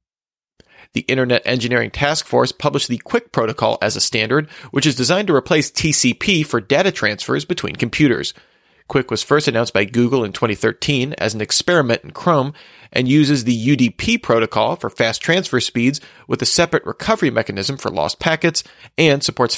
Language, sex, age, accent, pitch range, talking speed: English, male, 40-59, American, 115-145 Hz, 170 wpm